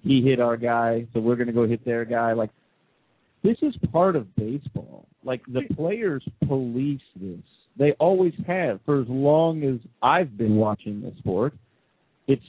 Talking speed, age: 175 wpm, 50-69